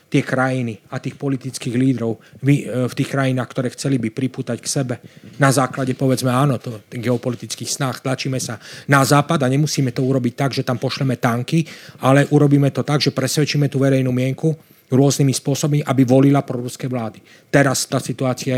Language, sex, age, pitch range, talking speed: Slovak, male, 40-59, 125-140 Hz, 180 wpm